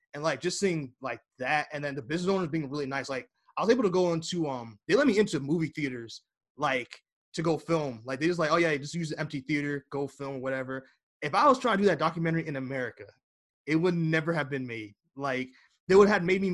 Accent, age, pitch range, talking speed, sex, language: American, 20-39, 130-165 Hz, 250 wpm, male, English